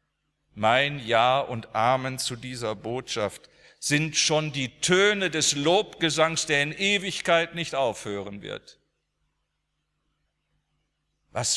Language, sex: German, male